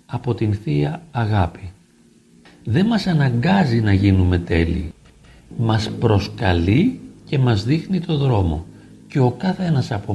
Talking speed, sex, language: 130 wpm, male, Greek